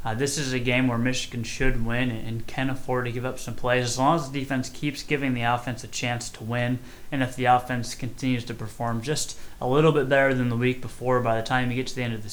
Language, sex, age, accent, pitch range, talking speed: English, male, 20-39, American, 120-130 Hz, 275 wpm